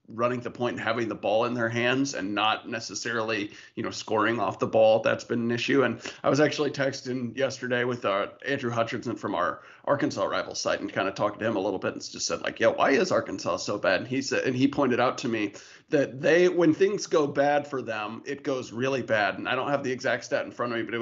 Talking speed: 255 wpm